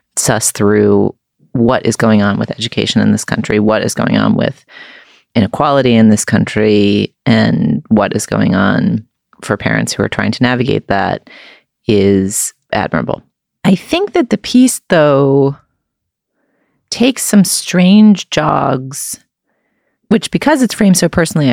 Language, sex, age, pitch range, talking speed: English, female, 30-49, 120-165 Hz, 140 wpm